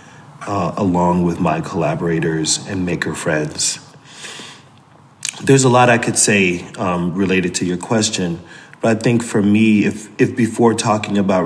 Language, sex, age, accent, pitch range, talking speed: English, male, 30-49, American, 100-115 Hz, 150 wpm